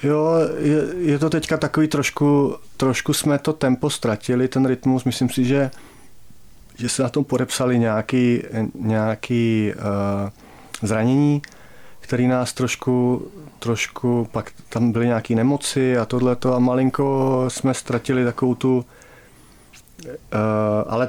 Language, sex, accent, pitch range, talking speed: Czech, male, native, 110-130 Hz, 130 wpm